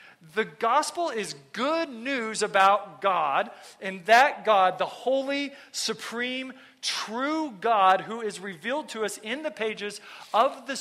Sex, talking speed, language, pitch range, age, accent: male, 140 wpm, English, 185-240 Hz, 40-59, American